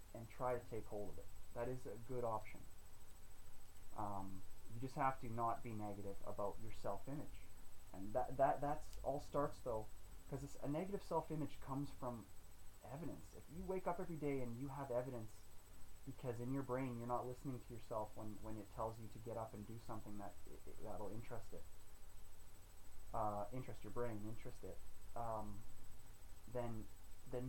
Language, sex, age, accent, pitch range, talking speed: English, male, 20-39, American, 95-135 Hz, 180 wpm